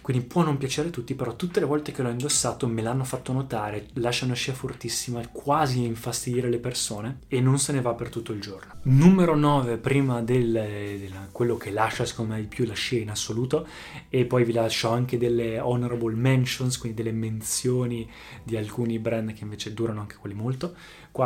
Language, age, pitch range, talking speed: Italian, 20-39, 110-130 Hz, 200 wpm